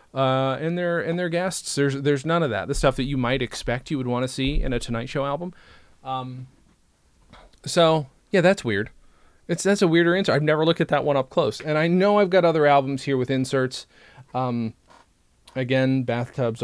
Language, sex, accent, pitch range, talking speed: English, male, American, 115-150 Hz, 210 wpm